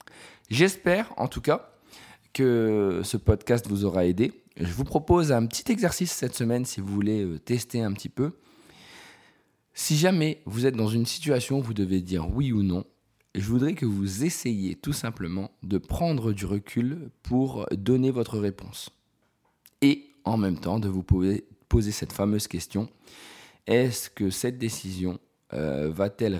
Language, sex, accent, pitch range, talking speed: French, male, French, 95-120 Hz, 160 wpm